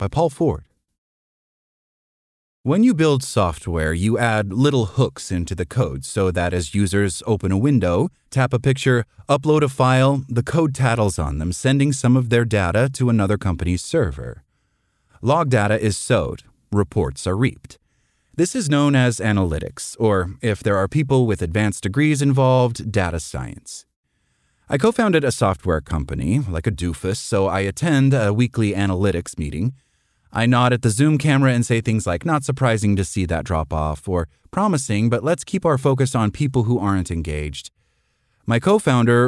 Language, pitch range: English, 95-130 Hz